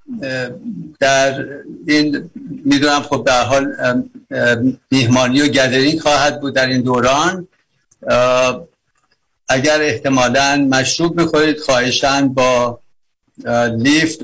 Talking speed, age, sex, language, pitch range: 90 wpm, 60-79, male, Persian, 120-140 Hz